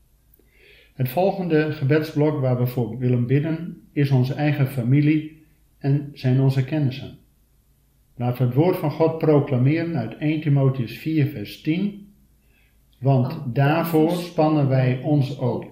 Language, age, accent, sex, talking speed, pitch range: Dutch, 50-69, Dutch, male, 130 wpm, 125-150 Hz